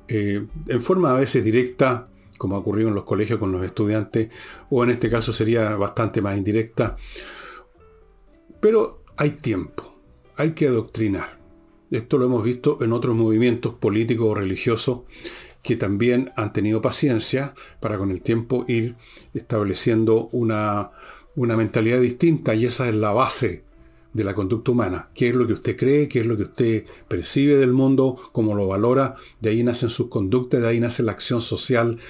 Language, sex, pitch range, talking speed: Spanish, male, 105-125 Hz, 170 wpm